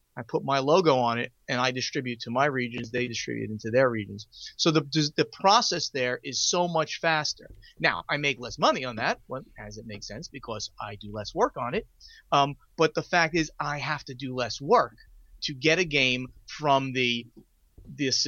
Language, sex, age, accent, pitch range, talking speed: English, male, 30-49, American, 120-150 Hz, 205 wpm